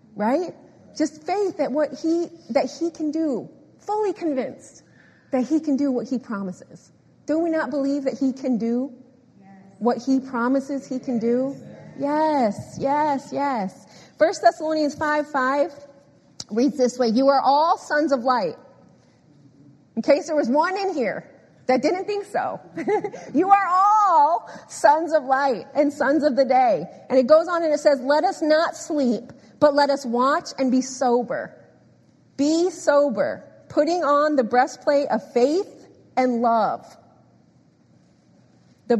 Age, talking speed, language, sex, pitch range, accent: 30-49, 155 wpm, English, female, 255-315 Hz, American